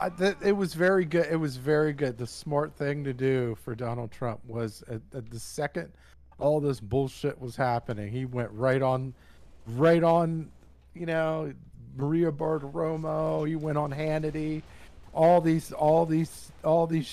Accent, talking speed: American, 160 wpm